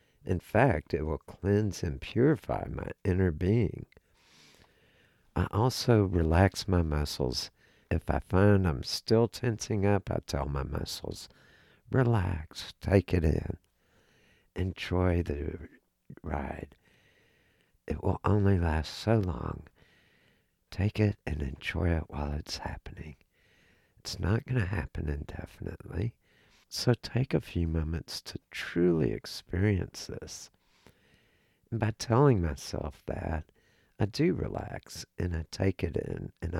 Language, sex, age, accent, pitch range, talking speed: English, male, 60-79, American, 85-110 Hz, 125 wpm